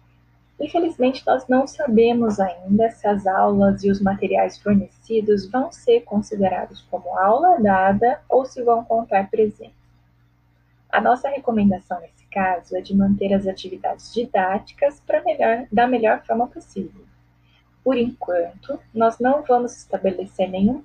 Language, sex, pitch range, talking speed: English, female, 190-235 Hz, 135 wpm